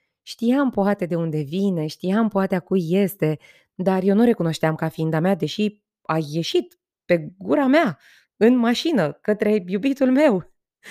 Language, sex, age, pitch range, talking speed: Romanian, female, 20-39, 160-210 Hz, 155 wpm